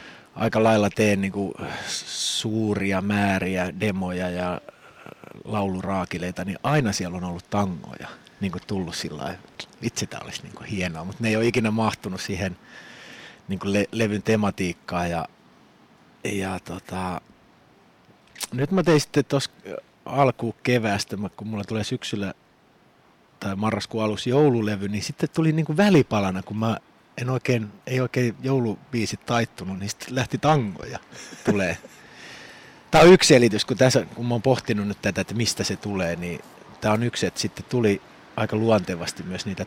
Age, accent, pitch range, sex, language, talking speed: 30-49, native, 95-120 Hz, male, Finnish, 155 wpm